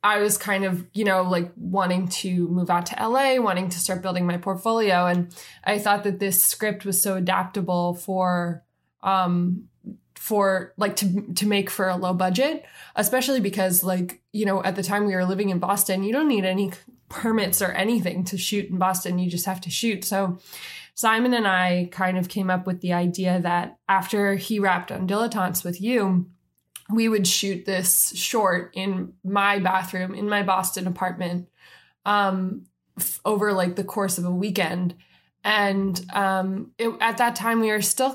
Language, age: English, 20-39